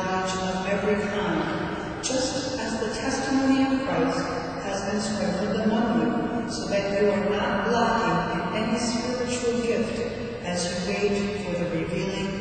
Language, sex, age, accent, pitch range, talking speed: English, female, 10-29, American, 175-235 Hz, 130 wpm